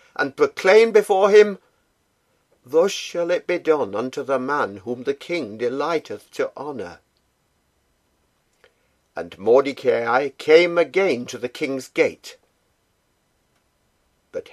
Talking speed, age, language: 110 wpm, 60-79, English